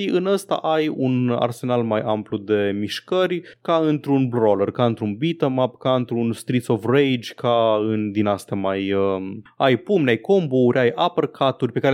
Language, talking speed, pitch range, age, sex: Romanian, 165 wpm, 110-140 Hz, 20-39, male